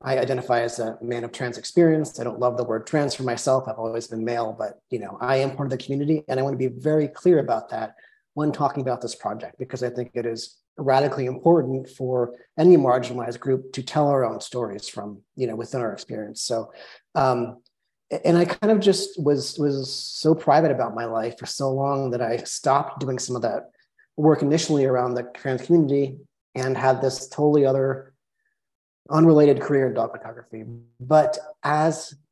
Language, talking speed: English, 195 wpm